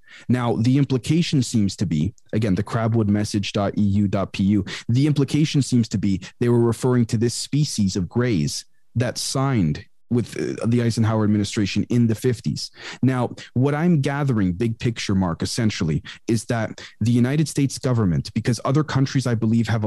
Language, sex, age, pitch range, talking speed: English, male, 30-49, 105-130 Hz, 155 wpm